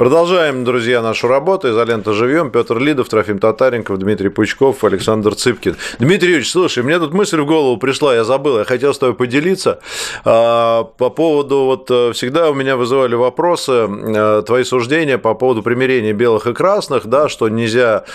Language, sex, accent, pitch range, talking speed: Russian, male, native, 105-140 Hz, 160 wpm